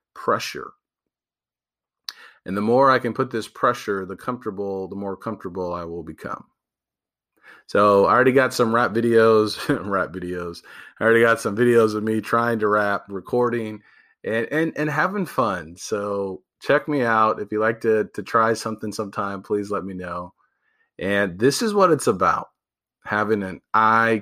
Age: 40-59